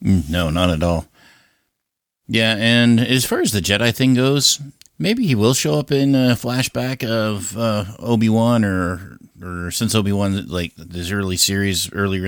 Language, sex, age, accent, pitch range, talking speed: English, male, 50-69, American, 90-110 Hz, 170 wpm